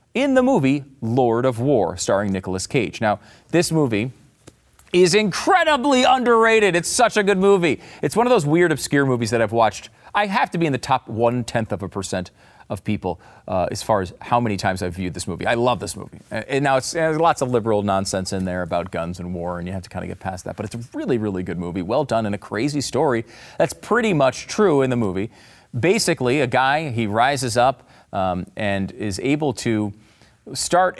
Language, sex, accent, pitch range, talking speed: English, male, American, 100-145 Hz, 225 wpm